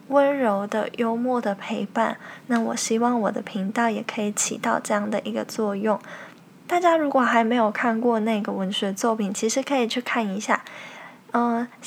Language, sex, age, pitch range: Chinese, female, 20-39, 210-240 Hz